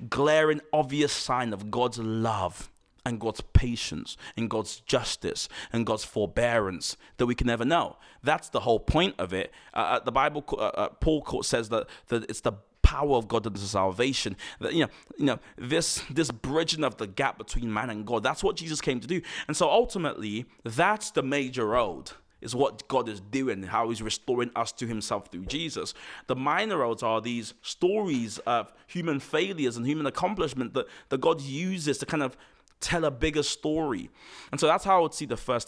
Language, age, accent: English, 20-39, British